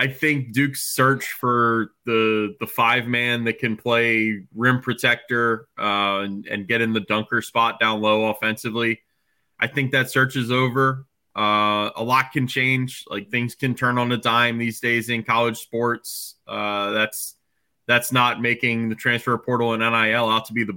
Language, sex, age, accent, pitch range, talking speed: English, male, 20-39, American, 110-130 Hz, 180 wpm